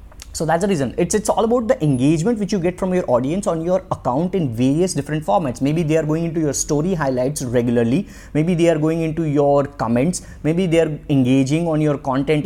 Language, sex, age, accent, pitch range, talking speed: English, male, 20-39, Indian, 130-165 Hz, 220 wpm